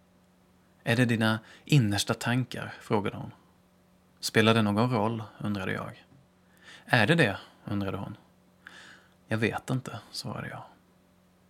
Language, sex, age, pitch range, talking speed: Swedish, male, 20-39, 100-115 Hz, 120 wpm